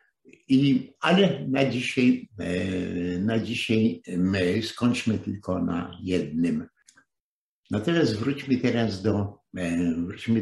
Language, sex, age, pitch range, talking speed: Polish, male, 60-79, 95-125 Hz, 90 wpm